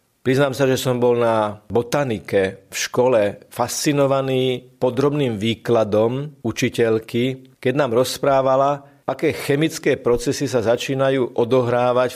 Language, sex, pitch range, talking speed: Slovak, male, 115-140 Hz, 110 wpm